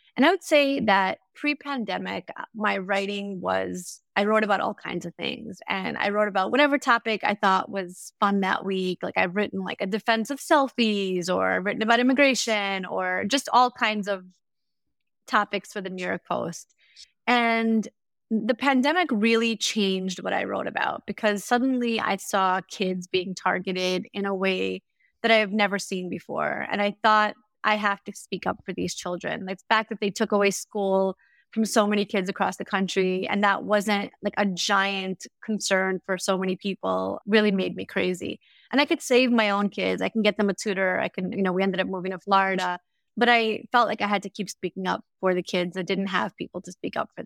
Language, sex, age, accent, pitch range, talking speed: English, female, 20-39, American, 190-225 Hz, 205 wpm